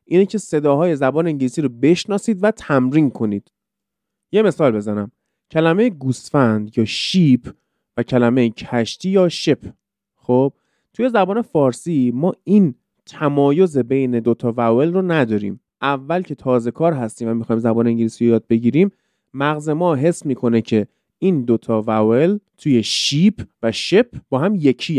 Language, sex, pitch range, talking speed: Persian, male, 120-170 Hz, 145 wpm